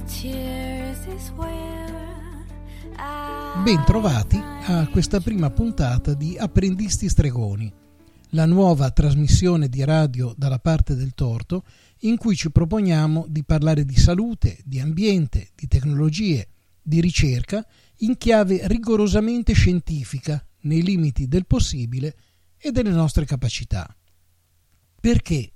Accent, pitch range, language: native, 105-165 Hz, Italian